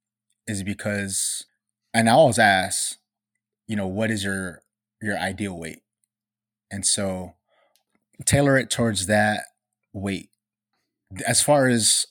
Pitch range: 100-115 Hz